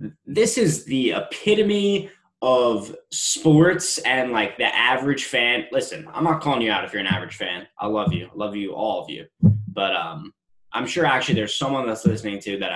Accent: American